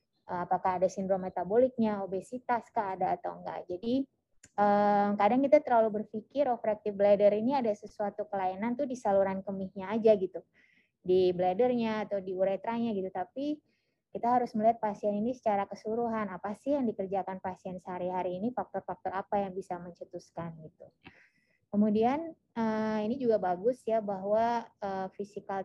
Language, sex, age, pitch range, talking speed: Indonesian, female, 20-39, 185-220 Hz, 140 wpm